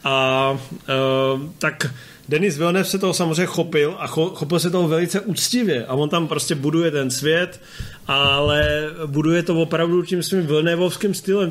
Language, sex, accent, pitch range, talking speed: Czech, male, native, 140-165 Hz, 160 wpm